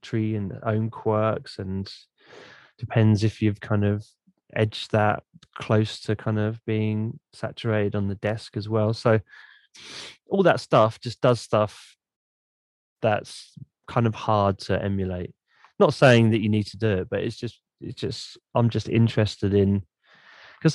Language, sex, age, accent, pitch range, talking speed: English, male, 20-39, British, 105-125 Hz, 155 wpm